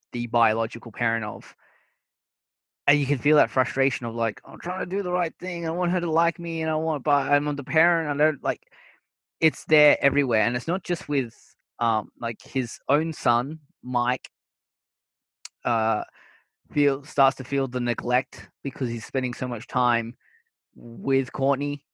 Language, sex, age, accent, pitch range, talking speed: English, male, 20-39, Australian, 120-155 Hz, 185 wpm